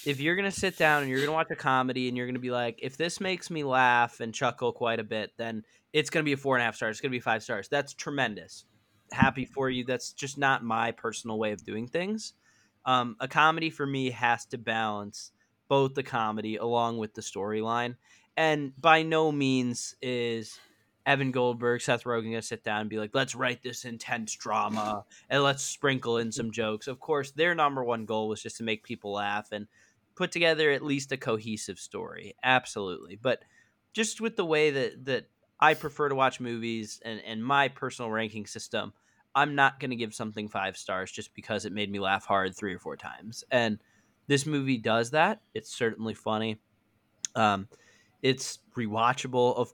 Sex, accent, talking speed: male, American, 205 wpm